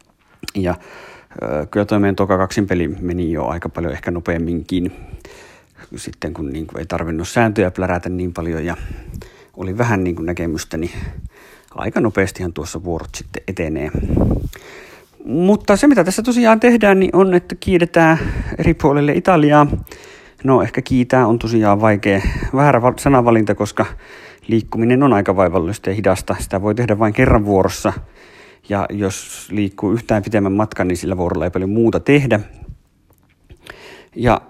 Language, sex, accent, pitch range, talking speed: Finnish, male, native, 90-120 Hz, 145 wpm